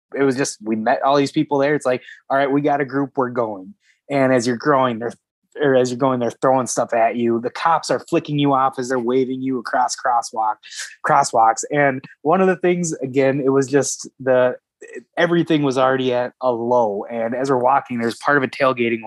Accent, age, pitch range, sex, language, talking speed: American, 20-39, 125-155 Hz, male, English, 225 wpm